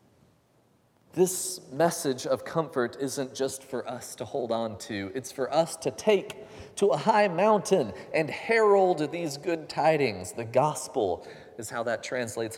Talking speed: 155 wpm